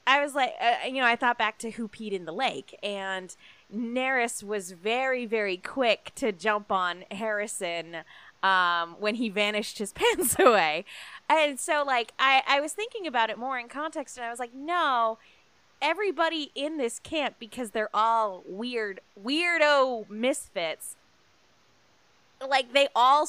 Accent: American